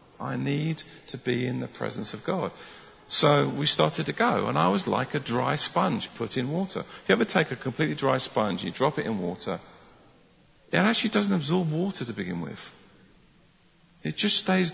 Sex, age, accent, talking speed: male, 50-69, British, 195 wpm